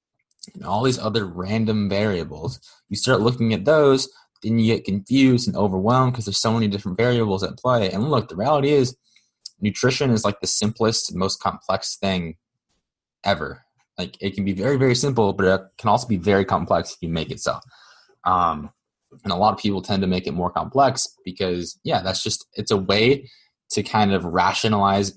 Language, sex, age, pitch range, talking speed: English, male, 20-39, 95-115 Hz, 195 wpm